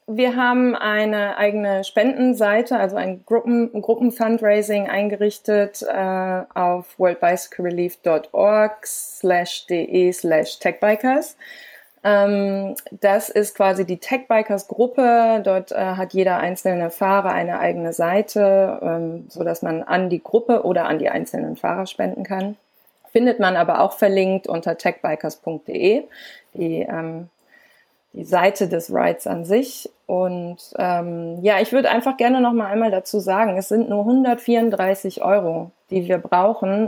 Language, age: German, 20-39